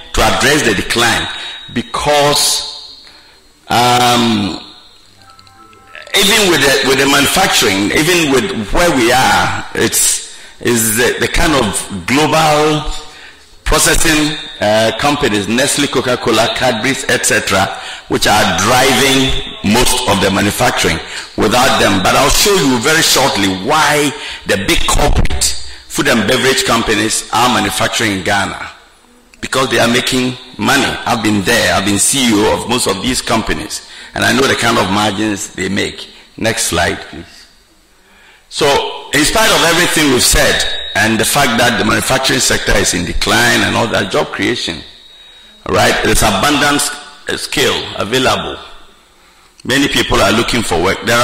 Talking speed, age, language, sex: 140 wpm, 50-69, English, male